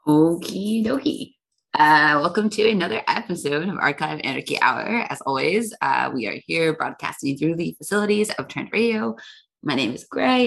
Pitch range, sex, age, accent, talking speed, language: 150-240 Hz, female, 20-39, American, 160 wpm, English